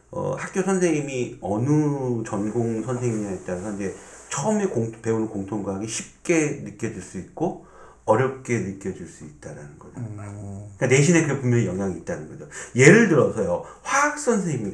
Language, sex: Korean, male